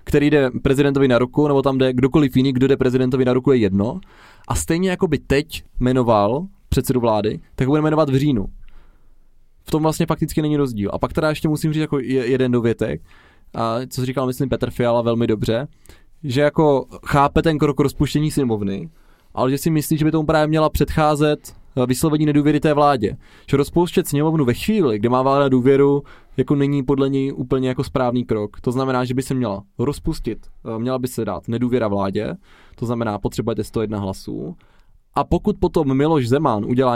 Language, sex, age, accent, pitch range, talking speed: Czech, male, 20-39, native, 120-150 Hz, 190 wpm